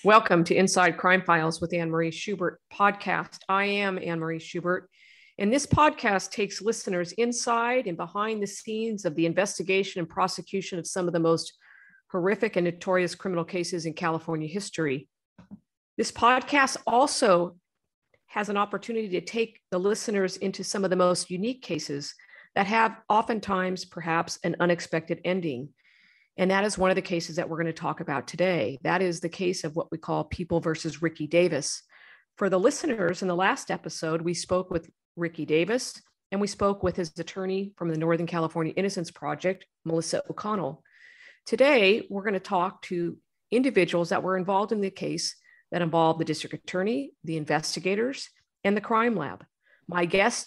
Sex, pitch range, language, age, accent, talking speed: female, 170-205 Hz, English, 50-69, American, 170 wpm